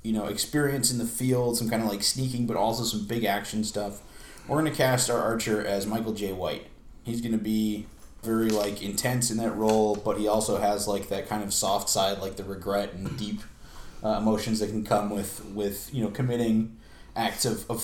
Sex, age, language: male, 30-49, English